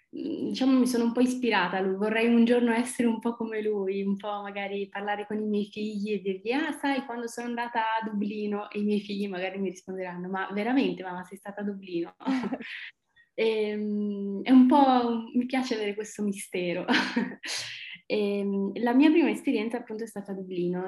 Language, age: Italian, 20-39